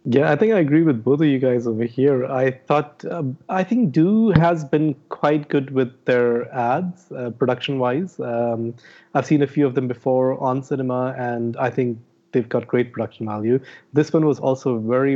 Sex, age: male, 30-49